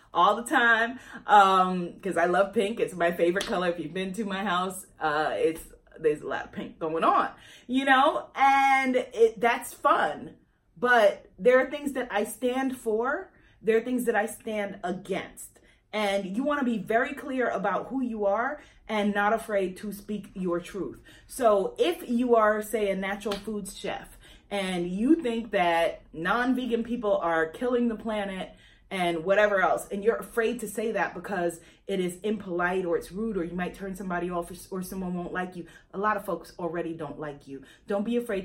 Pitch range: 185-245 Hz